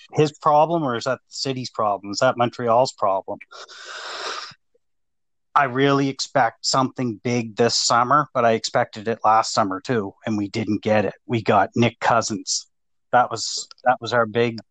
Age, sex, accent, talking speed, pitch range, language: 40-59, male, American, 165 wpm, 110-125 Hz, English